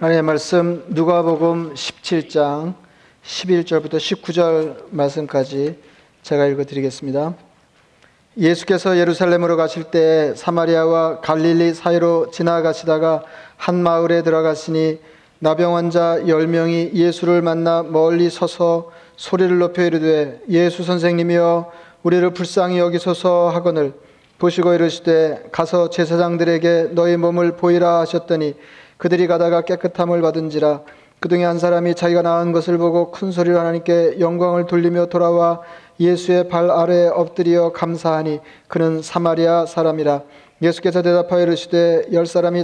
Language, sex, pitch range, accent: Korean, male, 160-175 Hz, native